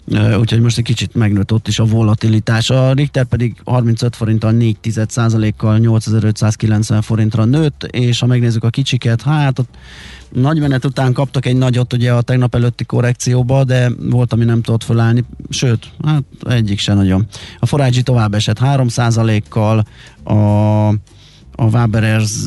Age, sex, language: 30-49, male, Hungarian